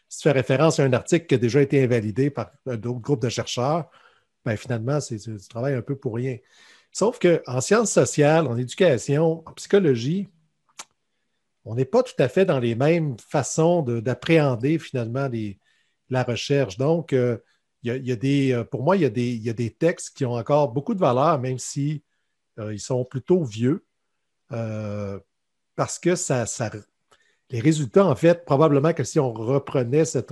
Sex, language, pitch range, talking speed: male, French, 120-155 Hz, 165 wpm